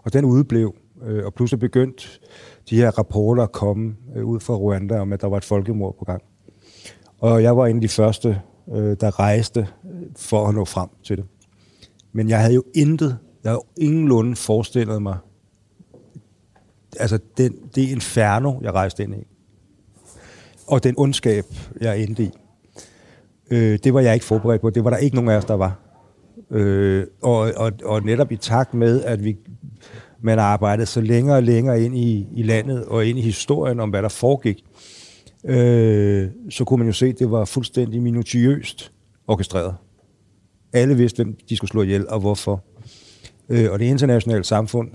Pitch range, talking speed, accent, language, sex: 100-120 Hz, 175 wpm, native, Danish, male